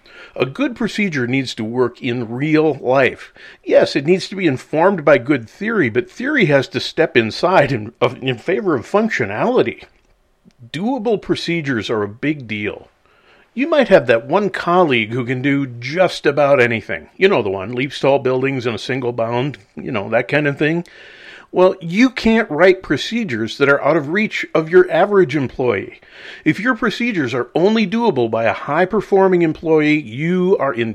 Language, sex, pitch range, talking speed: English, male, 125-185 Hz, 175 wpm